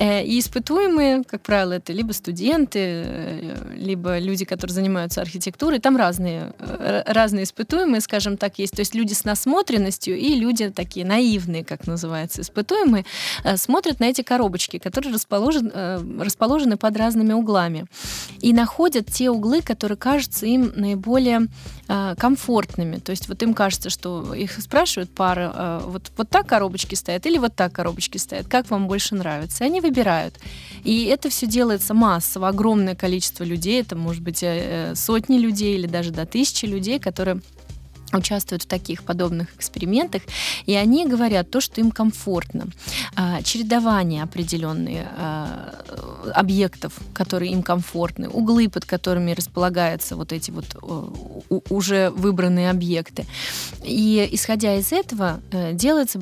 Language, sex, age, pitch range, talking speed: Russian, female, 20-39, 180-230 Hz, 135 wpm